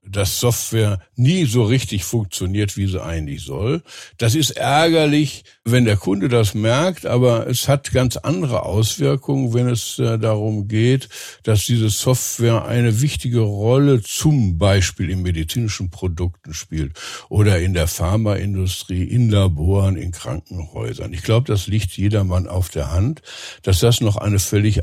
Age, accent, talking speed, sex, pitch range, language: 60-79, German, 145 wpm, male, 95-125 Hz, German